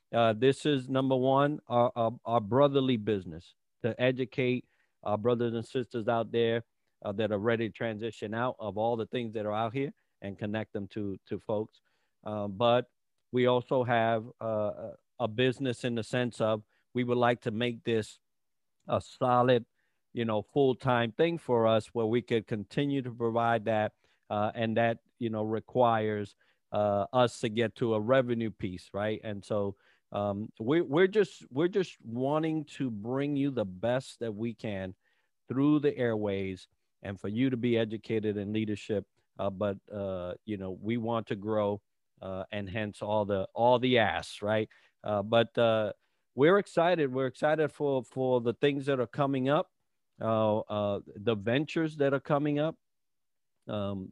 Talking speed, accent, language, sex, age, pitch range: 175 wpm, American, English, male, 50-69, 105-130 Hz